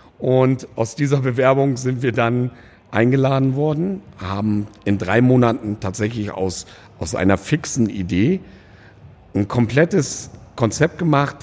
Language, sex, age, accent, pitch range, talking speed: German, male, 50-69, German, 100-135 Hz, 120 wpm